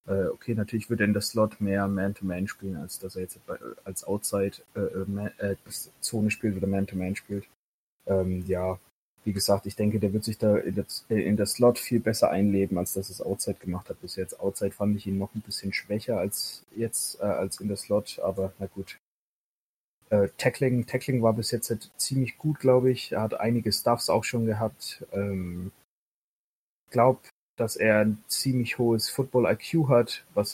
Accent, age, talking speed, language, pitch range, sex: German, 30-49, 190 wpm, German, 100-115 Hz, male